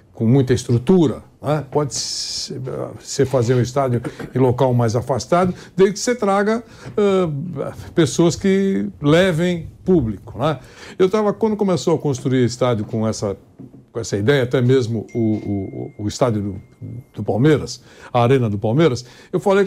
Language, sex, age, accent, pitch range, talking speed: Portuguese, male, 60-79, Brazilian, 120-175 Hz, 155 wpm